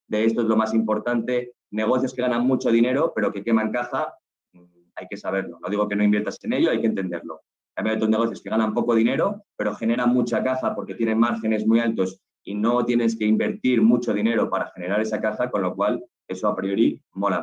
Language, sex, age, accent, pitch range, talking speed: Spanish, male, 20-39, Spanish, 105-120 Hz, 215 wpm